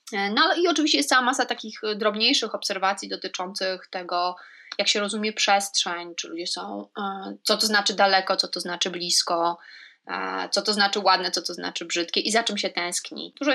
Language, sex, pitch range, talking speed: Polish, female, 180-220 Hz, 175 wpm